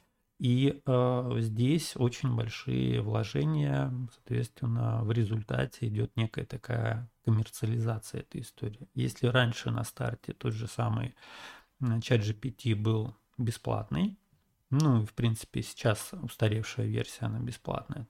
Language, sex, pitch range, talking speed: Russian, male, 115-130 Hz, 115 wpm